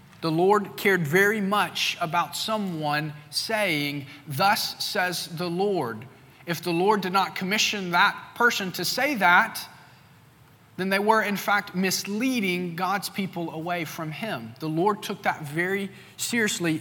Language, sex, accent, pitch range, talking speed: English, male, American, 155-200 Hz, 145 wpm